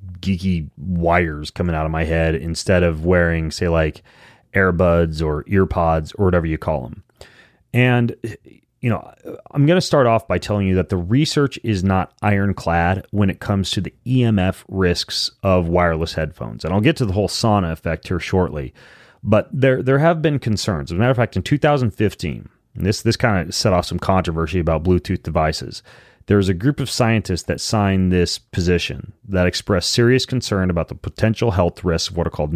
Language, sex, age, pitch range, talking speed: English, male, 30-49, 85-110 Hz, 195 wpm